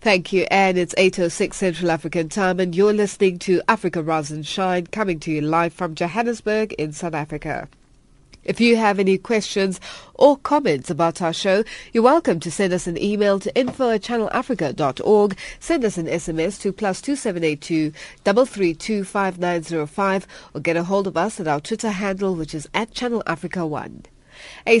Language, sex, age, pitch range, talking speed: English, female, 30-49, 170-215 Hz, 160 wpm